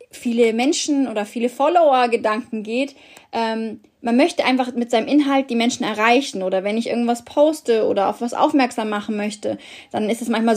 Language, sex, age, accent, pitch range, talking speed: German, female, 20-39, German, 215-265 Hz, 175 wpm